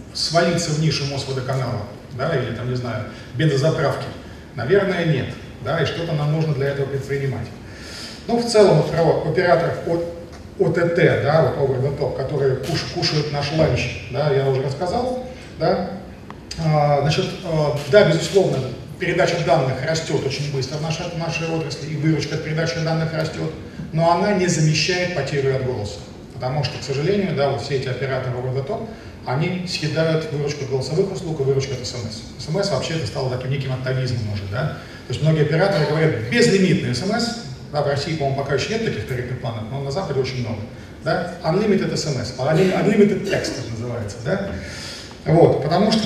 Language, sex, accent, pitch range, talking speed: Russian, male, native, 130-170 Hz, 165 wpm